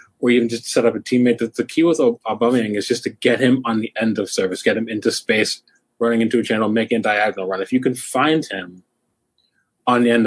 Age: 20-39